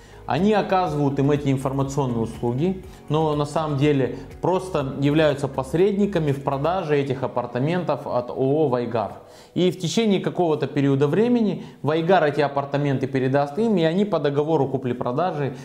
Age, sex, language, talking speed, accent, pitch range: 20-39, male, Russian, 140 wpm, native, 125-165 Hz